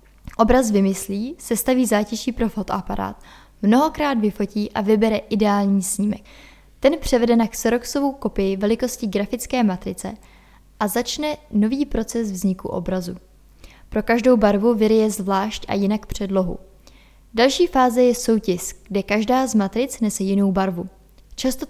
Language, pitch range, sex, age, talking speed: Czech, 200-250 Hz, female, 20-39, 125 wpm